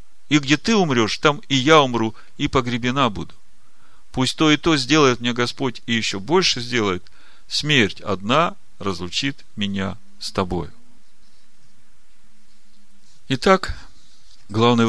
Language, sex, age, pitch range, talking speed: Russian, male, 40-59, 100-130 Hz, 120 wpm